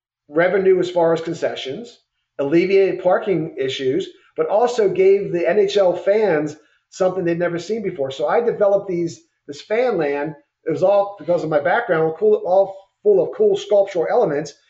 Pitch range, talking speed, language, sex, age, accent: 155-210 Hz, 165 wpm, English, male, 50-69, American